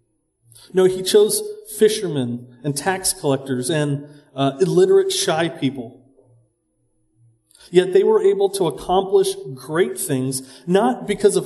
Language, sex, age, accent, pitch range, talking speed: English, male, 40-59, American, 130-190 Hz, 120 wpm